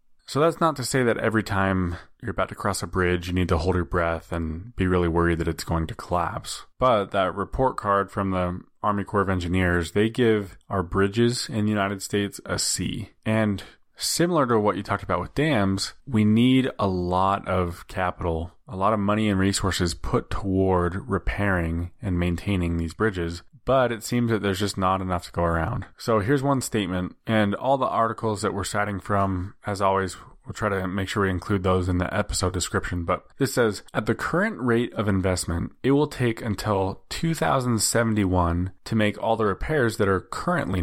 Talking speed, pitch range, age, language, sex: 200 wpm, 90-110 Hz, 20-39, English, male